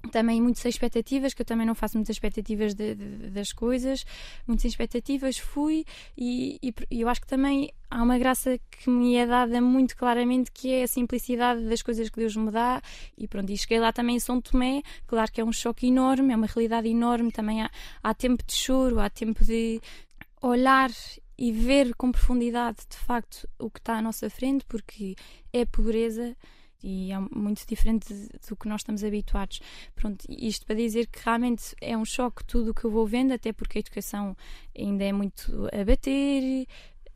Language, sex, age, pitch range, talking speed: Portuguese, female, 10-29, 215-245 Hz, 195 wpm